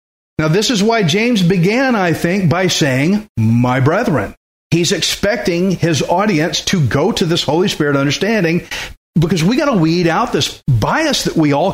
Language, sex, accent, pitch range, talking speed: English, male, American, 120-170 Hz, 175 wpm